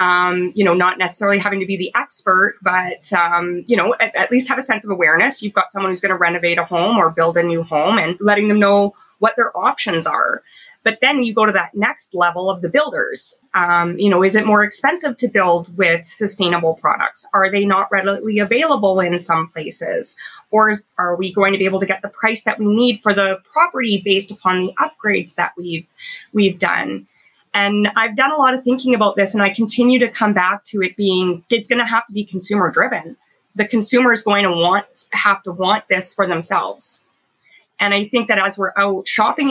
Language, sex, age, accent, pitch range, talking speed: English, female, 20-39, American, 180-215 Hz, 220 wpm